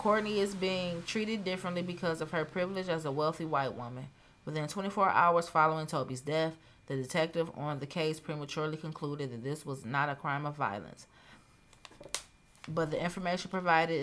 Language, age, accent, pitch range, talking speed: English, 30-49, American, 145-165 Hz, 165 wpm